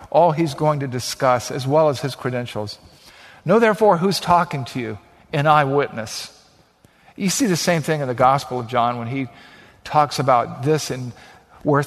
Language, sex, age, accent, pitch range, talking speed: English, male, 50-69, American, 135-170 Hz, 175 wpm